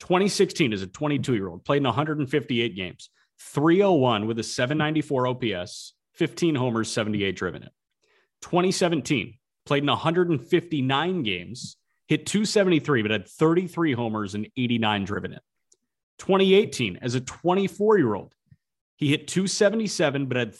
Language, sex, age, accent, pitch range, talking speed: English, male, 30-49, American, 115-160 Hz, 120 wpm